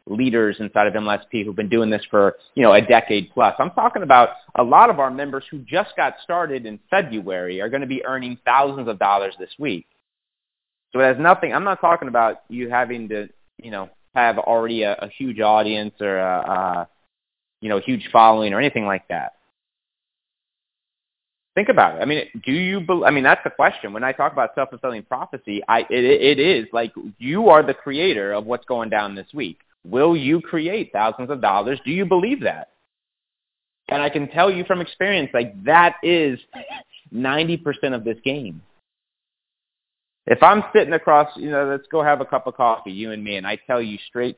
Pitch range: 110-150 Hz